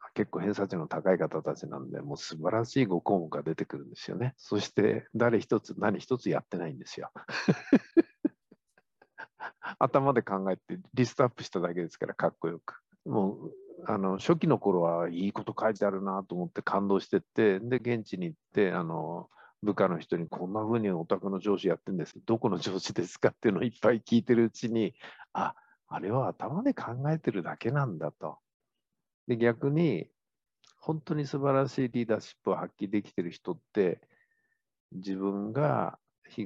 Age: 50-69